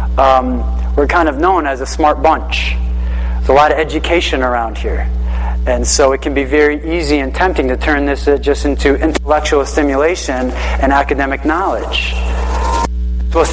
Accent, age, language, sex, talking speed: American, 30-49, English, male, 165 wpm